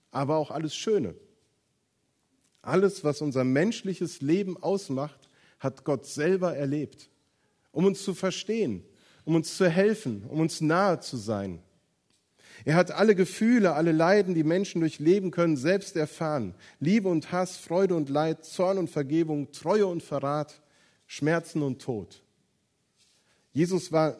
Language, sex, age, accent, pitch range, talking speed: German, male, 40-59, German, 135-180 Hz, 140 wpm